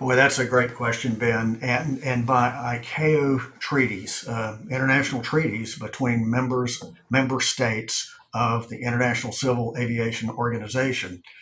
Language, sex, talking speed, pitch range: English, male, 125 wpm, 115-135 Hz